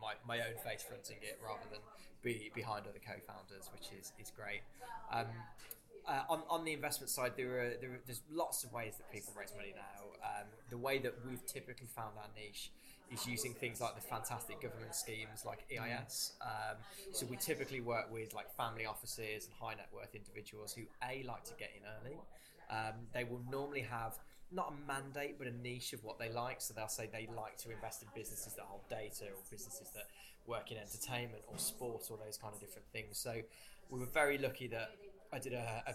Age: 10-29